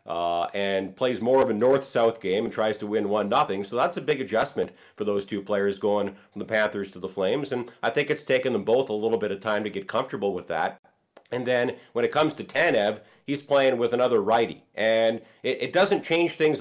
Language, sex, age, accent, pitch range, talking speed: English, male, 40-59, American, 105-135 Hz, 235 wpm